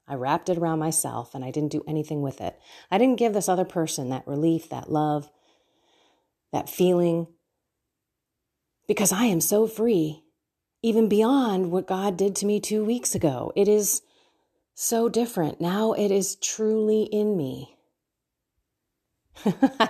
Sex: female